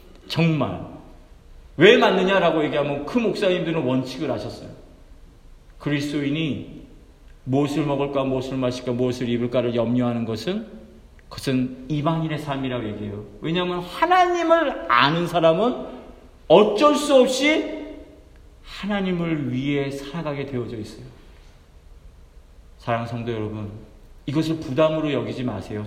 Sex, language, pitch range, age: male, Korean, 105-165 Hz, 40-59